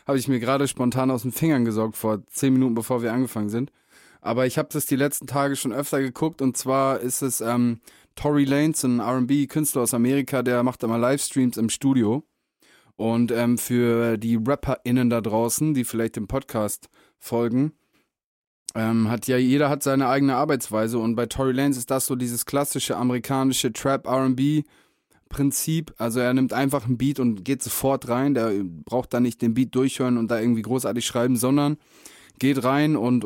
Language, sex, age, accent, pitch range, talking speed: German, male, 20-39, German, 120-140 Hz, 185 wpm